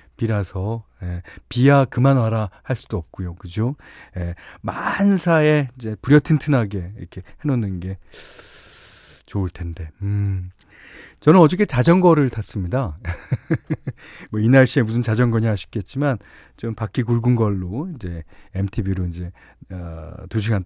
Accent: native